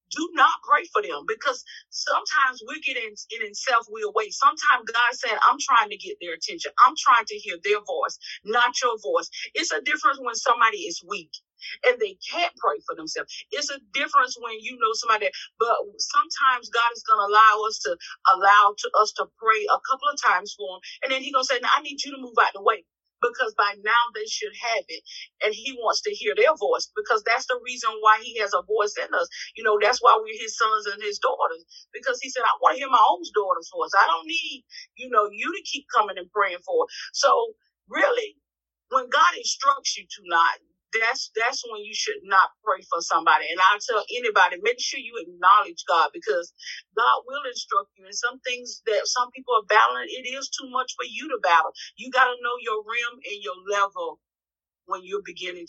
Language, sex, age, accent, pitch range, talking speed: English, female, 40-59, American, 215-345 Hz, 220 wpm